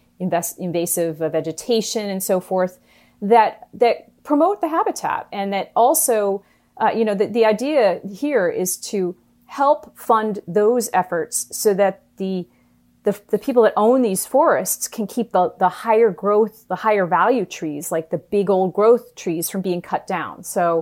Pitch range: 170-220 Hz